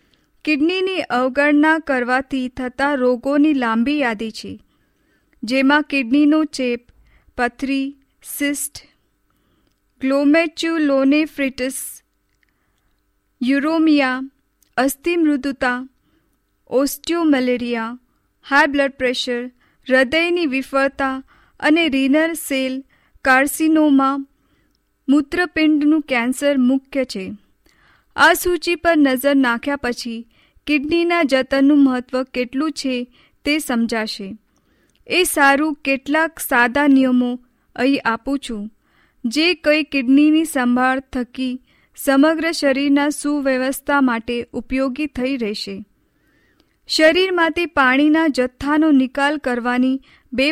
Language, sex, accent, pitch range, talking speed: Hindi, female, native, 250-295 Hz, 75 wpm